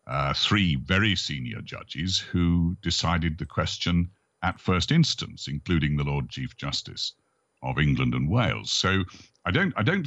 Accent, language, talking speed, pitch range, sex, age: British, English, 155 wpm, 75-105 Hz, male, 60-79